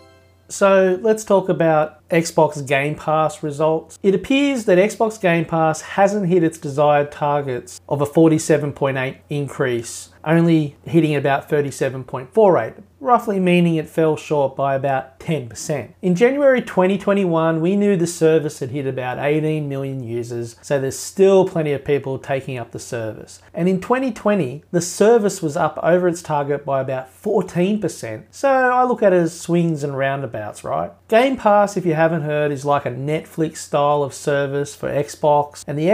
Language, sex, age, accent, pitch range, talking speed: English, male, 30-49, Australian, 135-175 Hz, 165 wpm